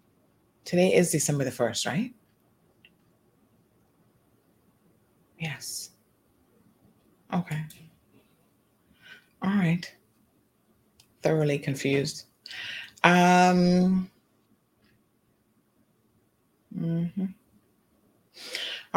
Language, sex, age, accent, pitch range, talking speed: English, female, 30-49, American, 125-170 Hz, 45 wpm